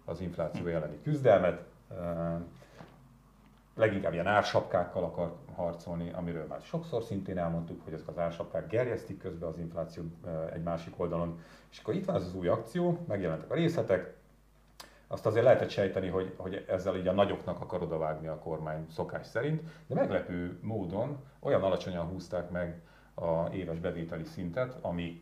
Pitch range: 85-100 Hz